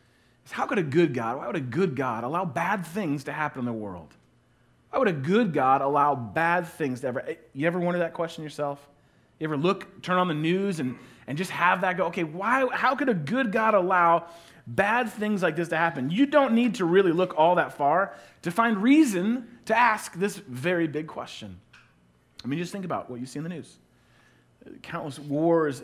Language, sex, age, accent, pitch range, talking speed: English, male, 30-49, American, 145-195 Hz, 215 wpm